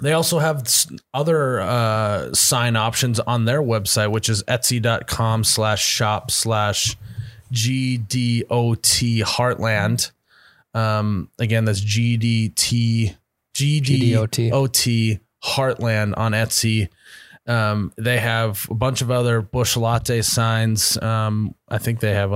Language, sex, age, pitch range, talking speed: English, male, 30-49, 110-120 Hz, 130 wpm